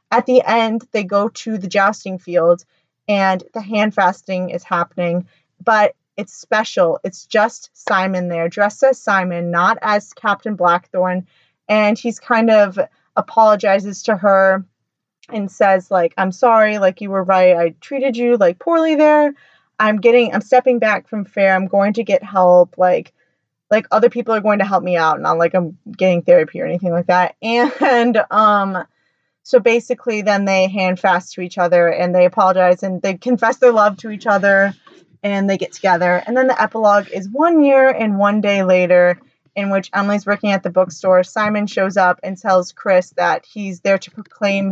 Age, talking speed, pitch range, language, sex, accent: 20-39, 185 wpm, 180-225 Hz, English, female, American